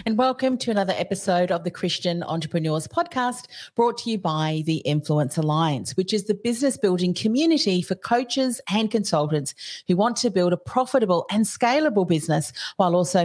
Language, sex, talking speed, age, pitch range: English, female, 170 wpm, 40-59, 155-215 Hz